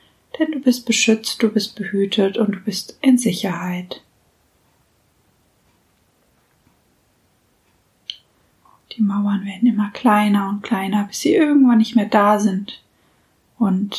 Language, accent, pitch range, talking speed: German, German, 200-230 Hz, 115 wpm